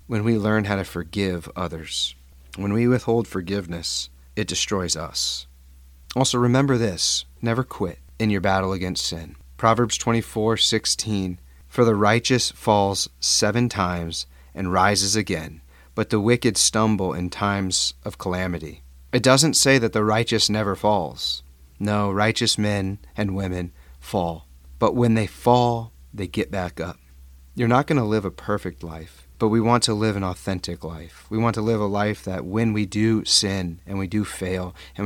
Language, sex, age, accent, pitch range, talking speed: English, male, 30-49, American, 80-110 Hz, 170 wpm